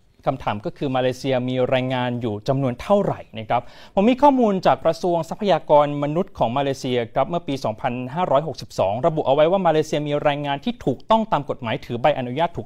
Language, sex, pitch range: Thai, male, 125-170 Hz